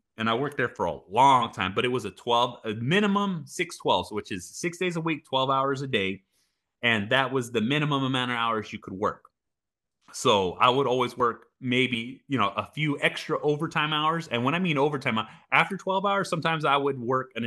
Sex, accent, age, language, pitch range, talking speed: male, American, 30-49, English, 110-150 Hz, 220 wpm